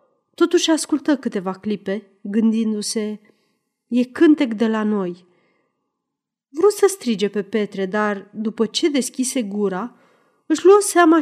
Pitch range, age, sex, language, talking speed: 200-280 Hz, 30-49, female, Romanian, 125 wpm